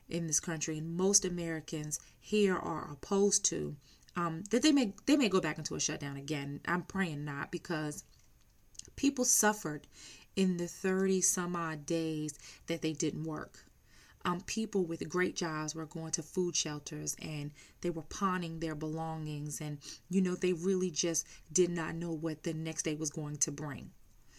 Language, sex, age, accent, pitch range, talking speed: English, female, 30-49, American, 155-185 Hz, 175 wpm